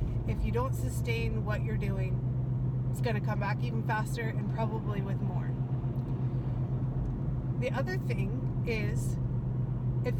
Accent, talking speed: American, 130 wpm